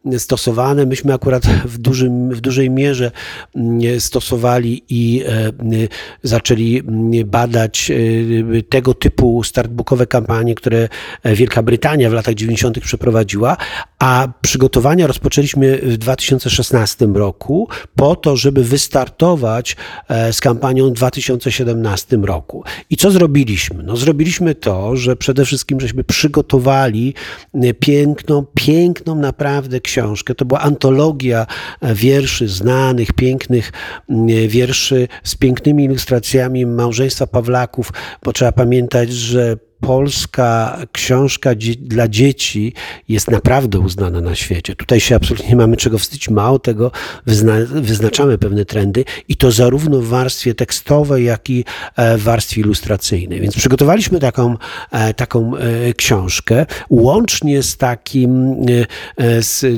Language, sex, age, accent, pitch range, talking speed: Polish, male, 40-59, native, 115-135 Hz, 110 wpm